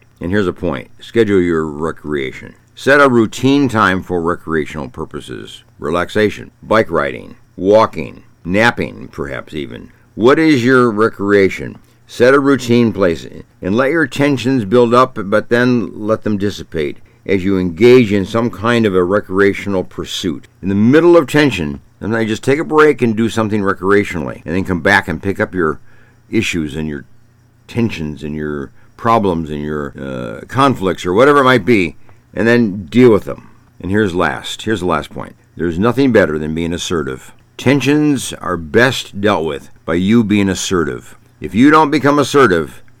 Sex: male